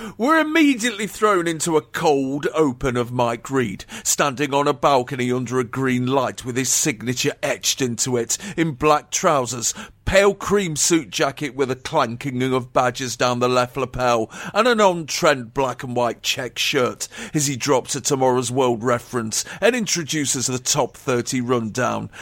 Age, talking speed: 40-59, 165 wpm